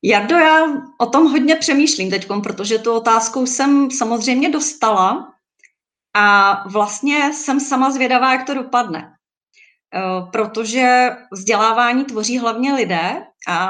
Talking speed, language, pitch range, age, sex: 120 wpm, Czech, 200-245 Hz, 30-49, female